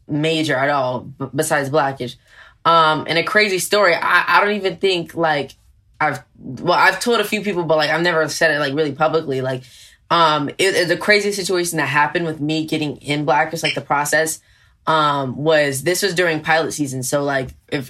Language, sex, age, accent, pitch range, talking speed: English, female, 10-29, American, 140-165 Hz, 200 wpm